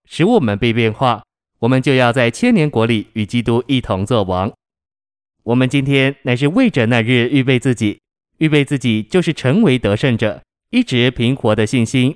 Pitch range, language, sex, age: 115-140 Hz, Chinese, male, 20-39